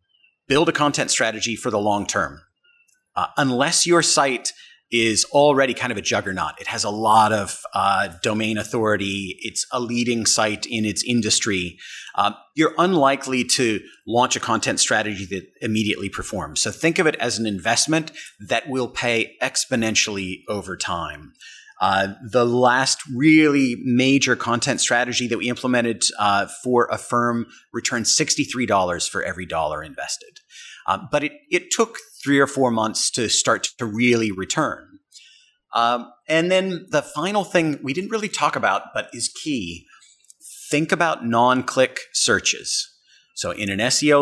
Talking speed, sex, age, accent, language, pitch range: 155 wpm, male, 30-49, American, English, 110-150 Hz